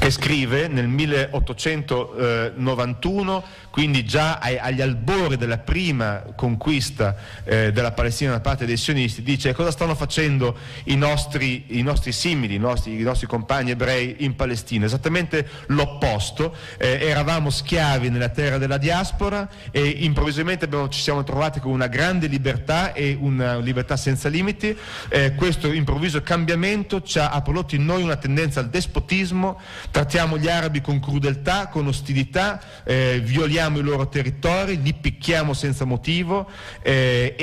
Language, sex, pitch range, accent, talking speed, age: Italian, male, 120-155 Hz, native, 140 wpm, 40-59